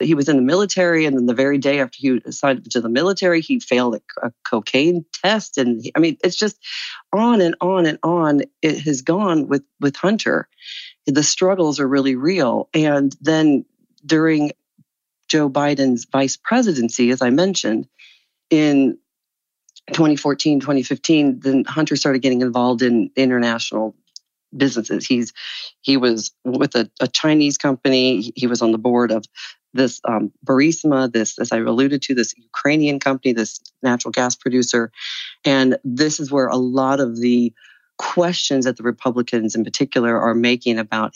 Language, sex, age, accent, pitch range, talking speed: English, female, 40-59, American, 125-155 Hz, 160 wpm